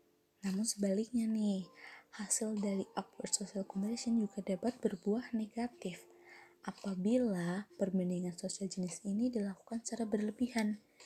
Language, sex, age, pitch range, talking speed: Indonesian, female, 20-39, 195-235 Hz, 110 wpm